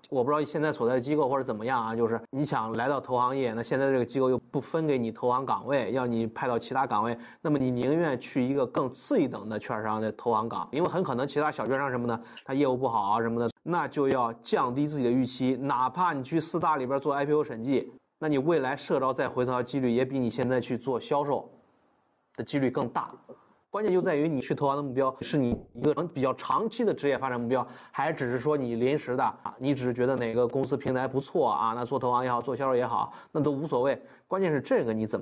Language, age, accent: Chinese, 20-39, native